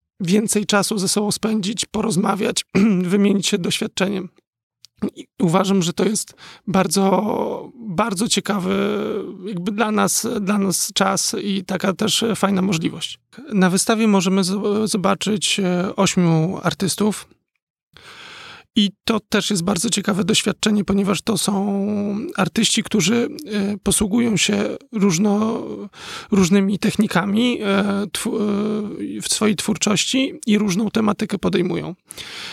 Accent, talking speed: native, 105 wpm